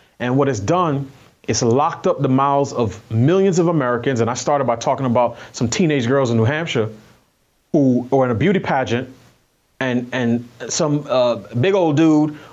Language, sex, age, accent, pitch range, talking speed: English, male, 30-49, American, 120-165 Hz, 180 wpm